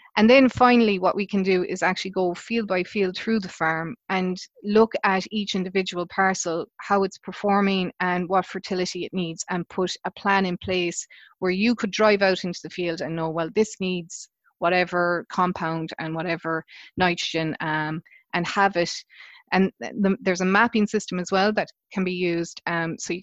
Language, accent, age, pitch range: English, Irish, 20-39, 165-195 Hz